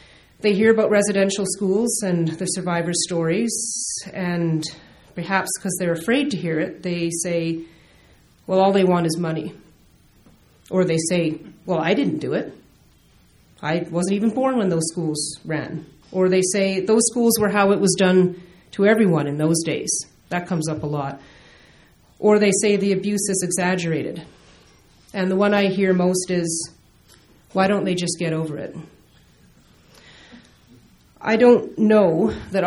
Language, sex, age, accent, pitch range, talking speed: English, female, 40-59, American, 165-195 Hz, 160 wpm